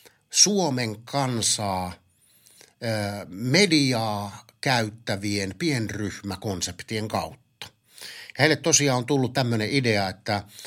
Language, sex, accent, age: Finnish, male, native, 50-69